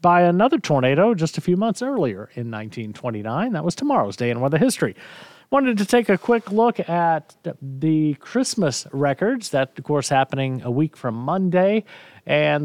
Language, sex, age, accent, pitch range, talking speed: English, male, 40-59, American, 120-165 Hz, 170 wpm